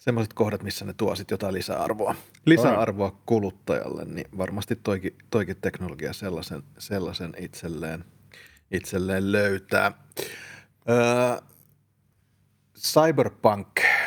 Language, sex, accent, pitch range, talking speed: Finnish, male, native, 100-115 Hz, 90 wpm